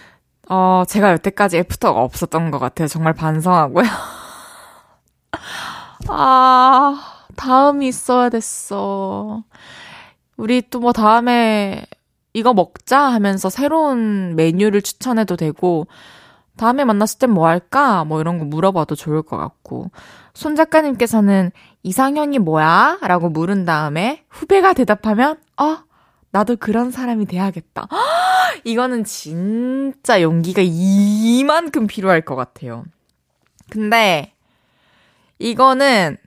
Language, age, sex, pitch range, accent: Korean, 20-39, female, 165-240 Hz, native